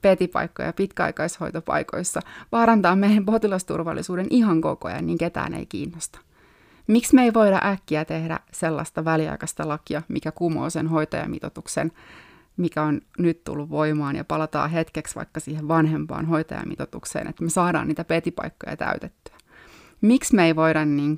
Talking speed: 135 wpm